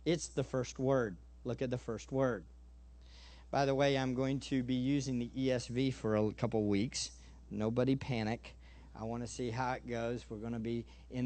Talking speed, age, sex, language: 205 wpm, 50-69, male, English